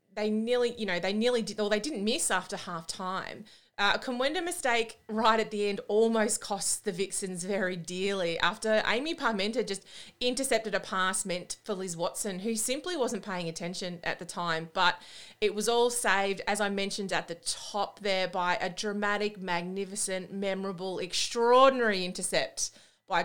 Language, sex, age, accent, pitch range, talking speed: English, female, 30-49, Australian, 175-225 Hz, 170 wpm